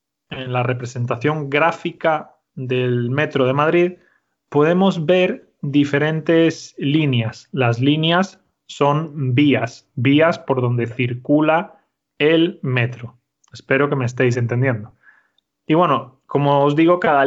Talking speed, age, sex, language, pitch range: 115 wpm, 20-39, male, Spanish, 135-175 Hz